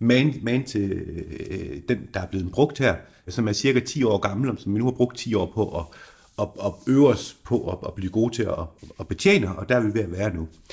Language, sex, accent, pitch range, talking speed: Danish, male, native, 100-140 Hz, 265 wpm